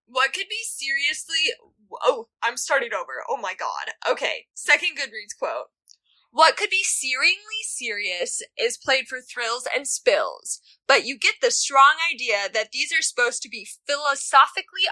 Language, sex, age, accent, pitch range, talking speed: English, female, 10-29, American, 230-370 Hz, 155 wpm